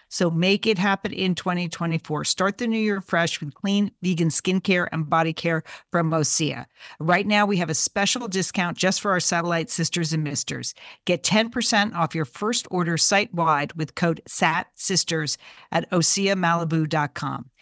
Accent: American